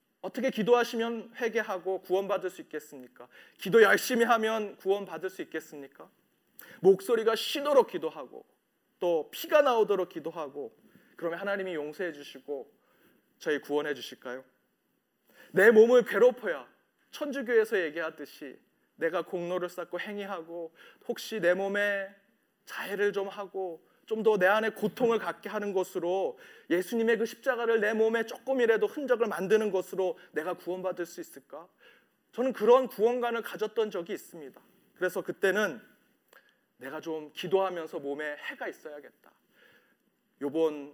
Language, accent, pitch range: Korean, native, 165-230 Hz